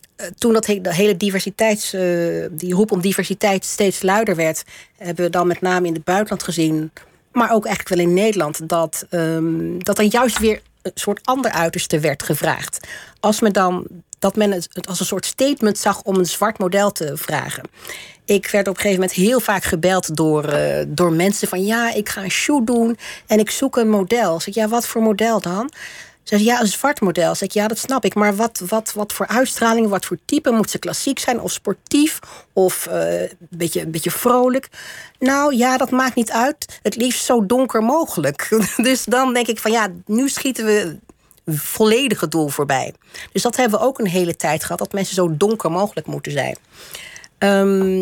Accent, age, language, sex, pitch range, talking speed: Dutch, 40-59, Dutch, female, 180-225 Hz, 195 wpm